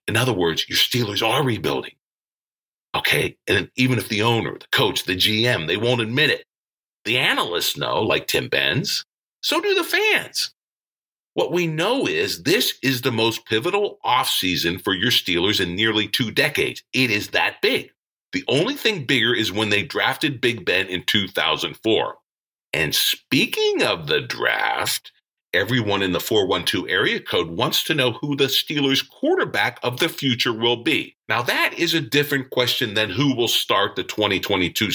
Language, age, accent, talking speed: English, 50-69, American, 170 wpm